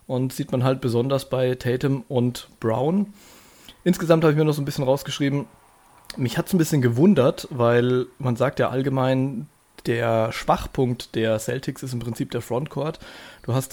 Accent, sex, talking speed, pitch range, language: German, male, 175 wpm, 120-150 Hz, German